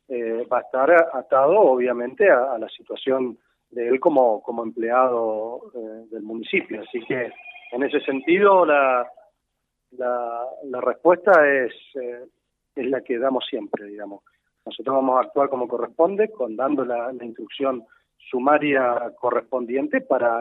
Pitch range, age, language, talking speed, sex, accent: 125-185 Hz, 40-59, Spanish, 145 wpm, male, Argentinian